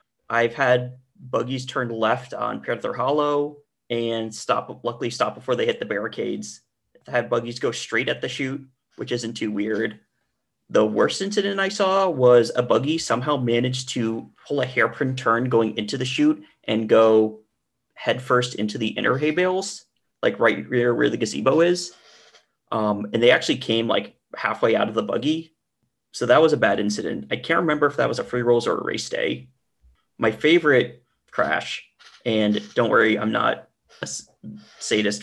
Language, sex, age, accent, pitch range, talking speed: English, male, 30-49, American, 115-145 Hz, 175 wpm